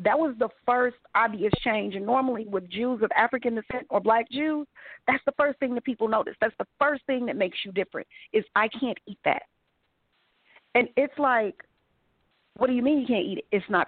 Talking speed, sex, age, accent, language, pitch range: 210 wpm, female, 40-59, American, English, 210-280 Hz